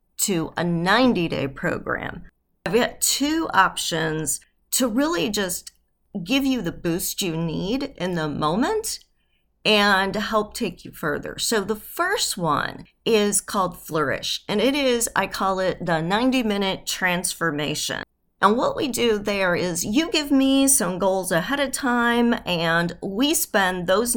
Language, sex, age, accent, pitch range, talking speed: English, female, 40-59, American, 165-220 Hz, 150 wpm